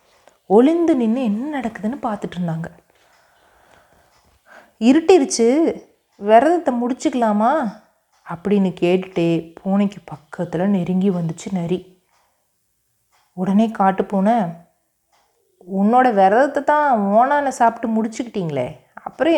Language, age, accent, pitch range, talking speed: Tamil, 30-49, native, 175-240 Hz, 75 wpm